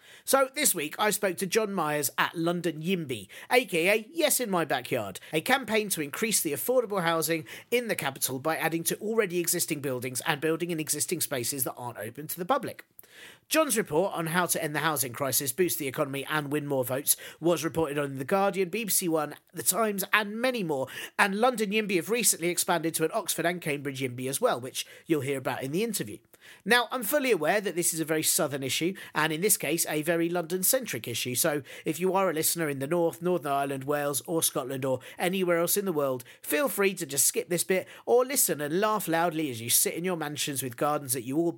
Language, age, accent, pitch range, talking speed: English, 40-59, British, 145-195 Hz, 220 wpm